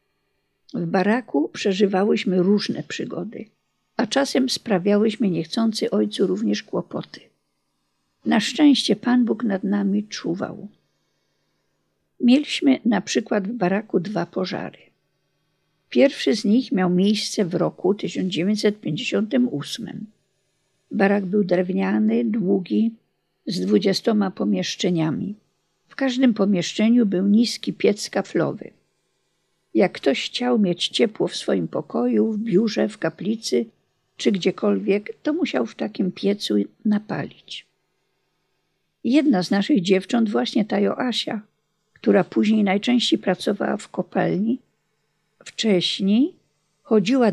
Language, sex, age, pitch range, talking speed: Polish, female, 50-69, 190-230 Hz, 105 wpm